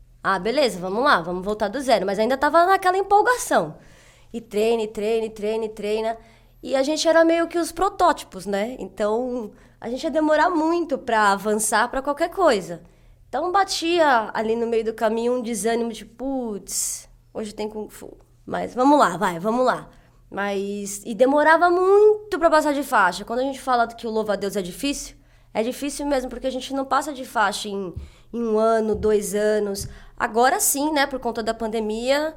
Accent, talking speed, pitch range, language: Brazilian, 195 wpm, 215-280 Hz, Portuguese